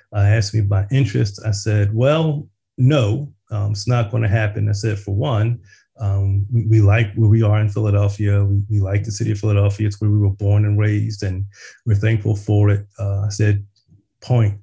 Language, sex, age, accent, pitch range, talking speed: English, male, 30-49, American, 100-115 Hz, 210 wpm